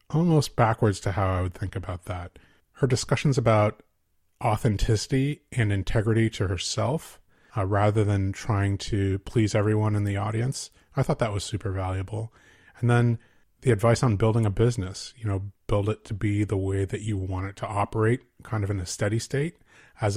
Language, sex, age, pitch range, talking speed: English, male, 30-49, 95-115 Hz, 185 wpm